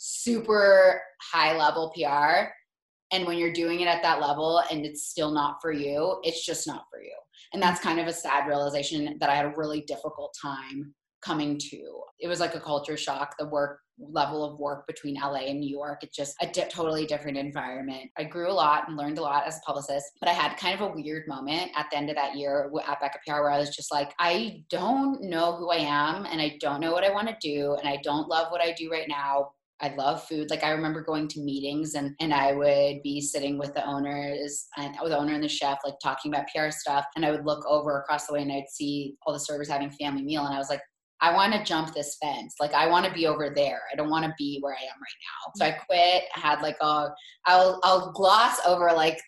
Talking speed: 245 wpm